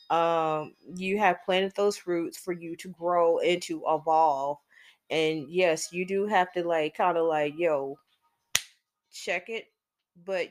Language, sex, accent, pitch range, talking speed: English, female, American, 170-200 Hz, 155 wpm